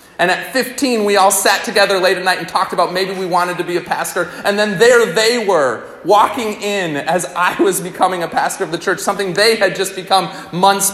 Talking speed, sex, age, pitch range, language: 230 wpm, male, 30-49, 165-210 Hz, English